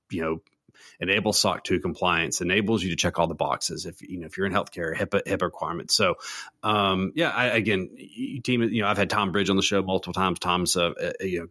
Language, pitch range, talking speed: English, 90-115 Hz, 245 wpm